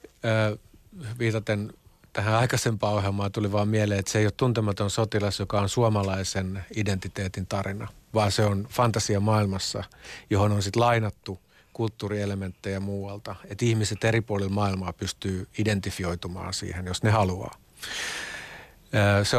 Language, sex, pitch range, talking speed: Finnish, male, 90-105 Hz, 125 wpm